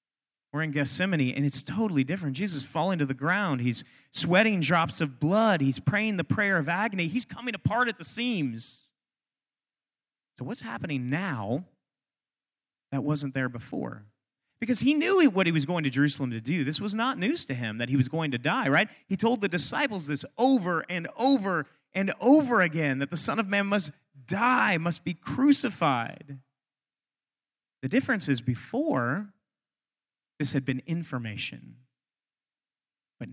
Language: English